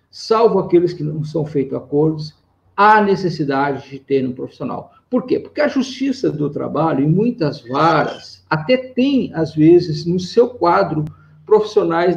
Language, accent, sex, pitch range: Portuguese, Brazilian, male, 155-225 Hz